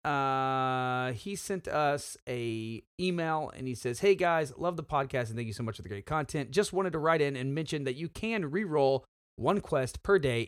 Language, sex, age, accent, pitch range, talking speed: English, male, 30-49, American, 110-160 Hz, 220 wpm